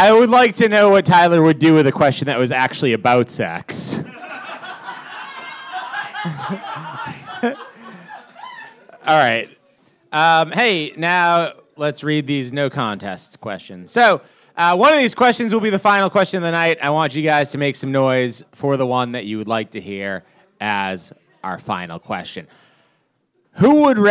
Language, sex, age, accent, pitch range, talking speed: English, male, 30-49, American, 110-165 Hz, 160 wpm